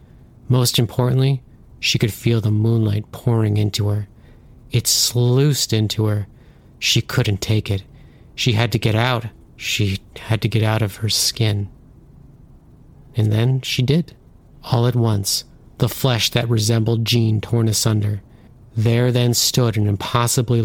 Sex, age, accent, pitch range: male, 40-59, American, 110-125 Hz